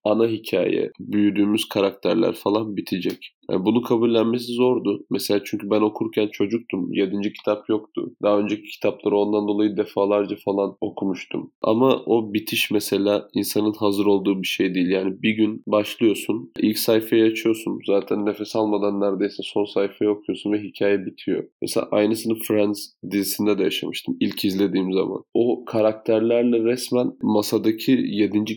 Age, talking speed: 20-39, 140 wpm